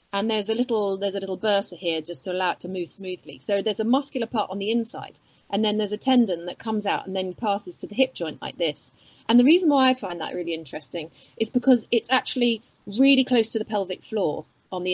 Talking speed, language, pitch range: 250 wpm, English, 180-230 Hz